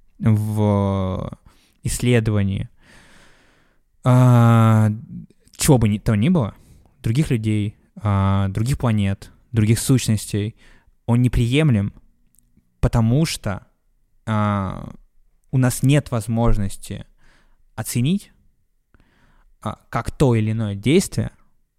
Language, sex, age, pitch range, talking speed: Russian, male, 20-39, 105-135 Hz, 75 wpm